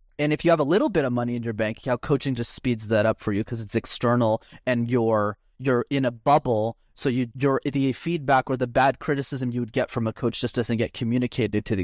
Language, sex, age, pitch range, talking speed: English, male, 20-39, 115-145 Hz, 260 wpm